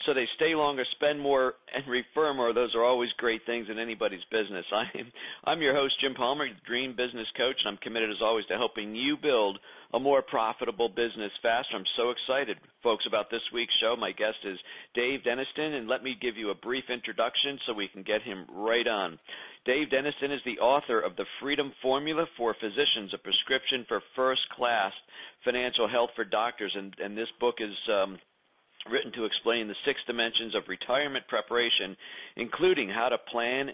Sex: male